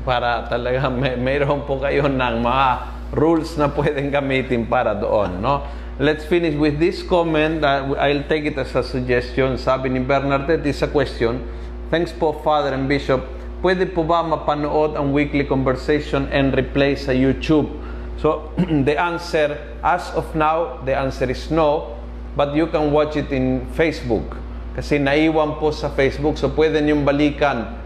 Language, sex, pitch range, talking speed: Filipino, male, 125-150 Hz, 160 wpm